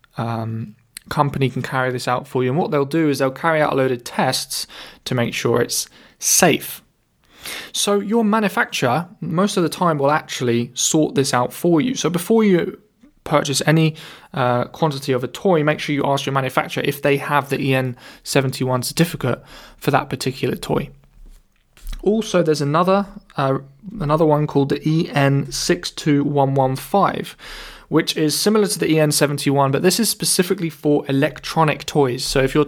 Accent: British